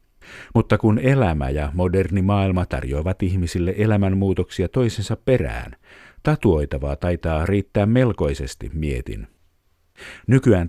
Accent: native